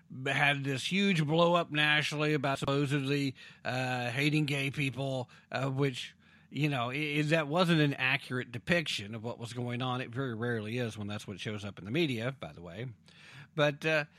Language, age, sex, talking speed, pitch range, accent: English, 50-69, male, 180 wpm, 125-175 Hz, American